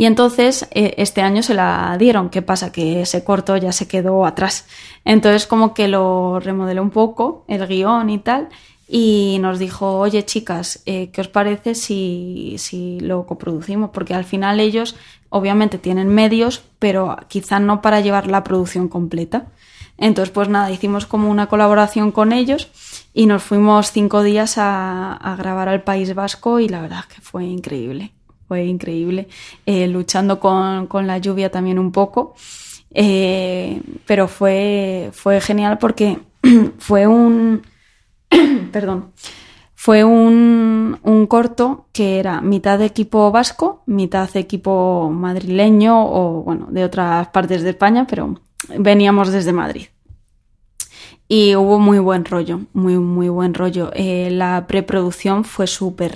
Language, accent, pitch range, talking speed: Spanish, Spanish, 185-215 Hz, 150 wpm